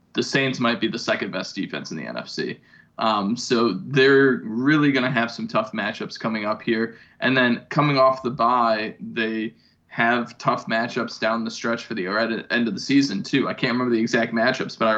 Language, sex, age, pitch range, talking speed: English, male, 20-39, 115-130 Hz, 215 wpm